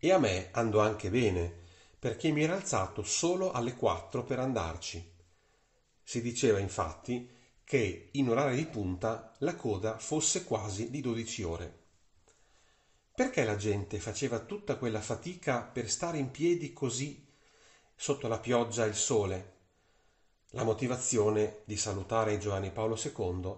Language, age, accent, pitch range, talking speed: Italian, 40-59, native, 90-125 Hz, 145 wpm